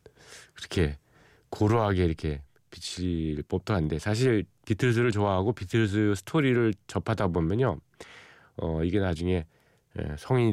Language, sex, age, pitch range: Korean, male, 40-59, 90-120 Hz